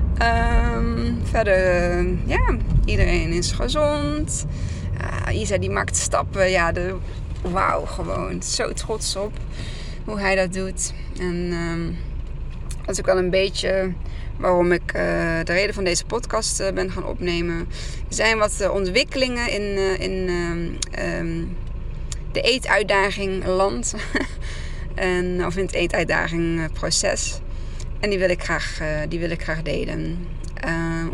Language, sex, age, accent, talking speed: Dutch, female, 20-39, Dutch, 130 wpm